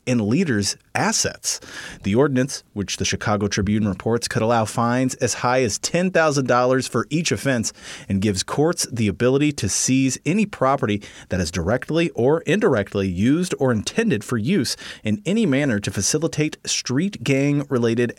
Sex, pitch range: male, 105-140 Hz